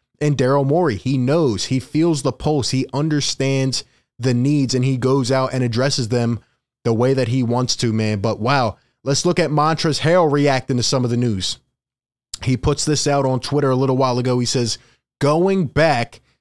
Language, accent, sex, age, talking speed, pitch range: English, American, male, 20-39, 200 wpm, 125-150 Hz